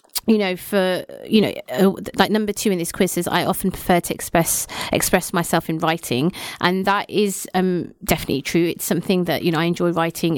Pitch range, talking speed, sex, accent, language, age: 165-190 Hz, 210 wpm, female, British, English, 30-49